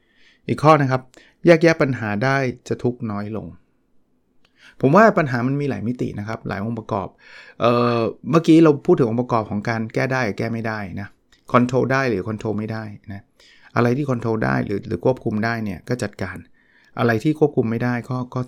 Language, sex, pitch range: Thai, male, 105-130 Hz